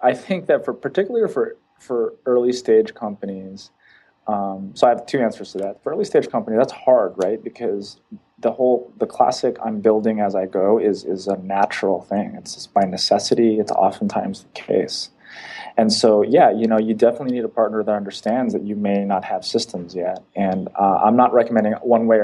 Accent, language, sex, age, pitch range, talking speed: American, English, male, 20-39, 95-120 Hz, 200 wpm